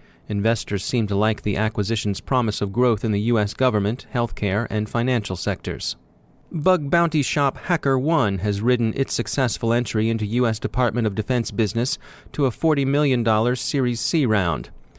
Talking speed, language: 160 wpm, English